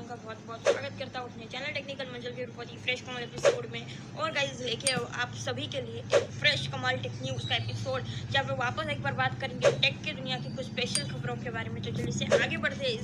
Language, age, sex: Hindi, 20-39, female